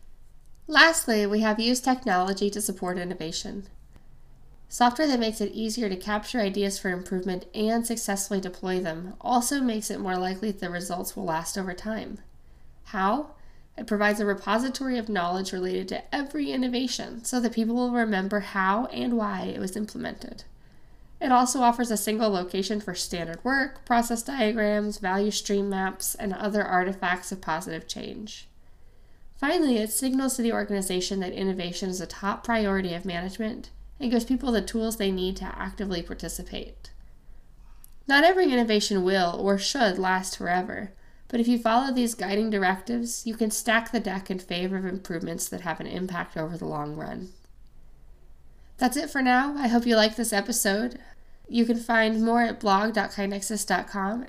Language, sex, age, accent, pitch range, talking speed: English, female, 20-39, American, 185-235 Hz, 160 wpm